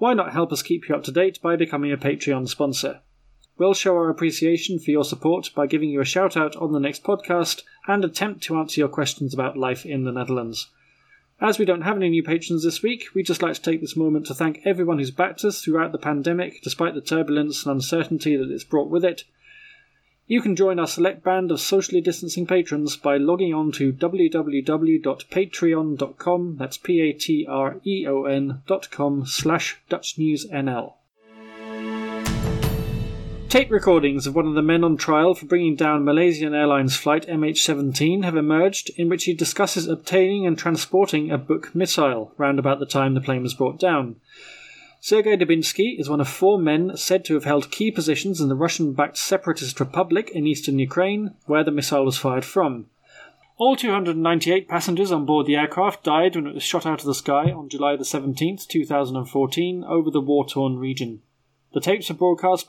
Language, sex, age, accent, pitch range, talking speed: English, male, 30-49, British, 140-180 Hz, 180 wpm